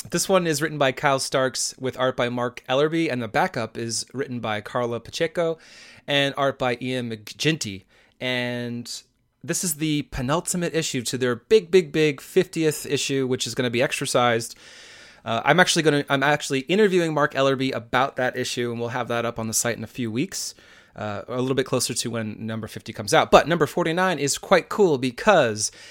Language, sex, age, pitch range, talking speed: English, male, 30-49, 120-155 Hz, 195 wpm